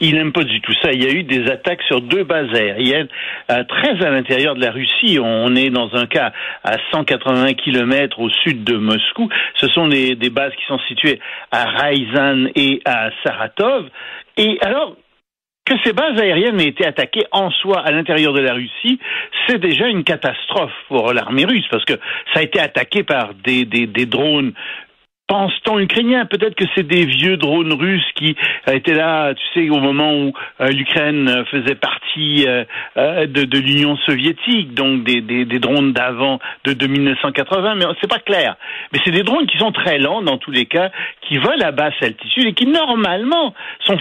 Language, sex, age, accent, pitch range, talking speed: French, male, 60-79, French, 135-210 Hz, 195 wpm